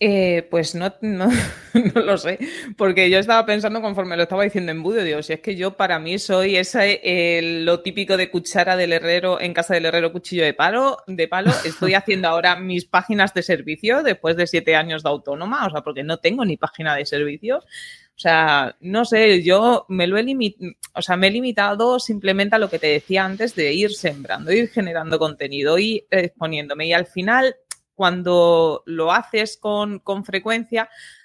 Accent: Spanish